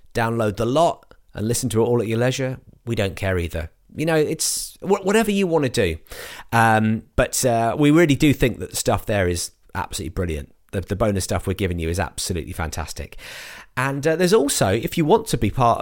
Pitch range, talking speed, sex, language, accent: 100-130 Hz, 215 wpm, male, English, British